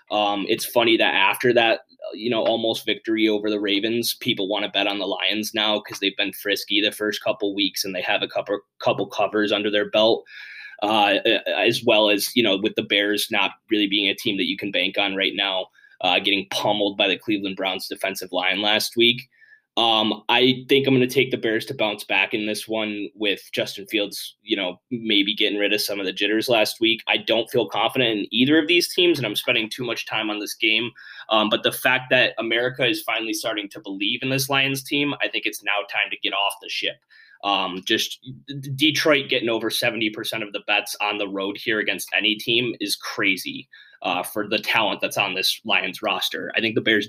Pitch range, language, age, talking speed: 105-130 Hz, English, 20-39, 225 wpm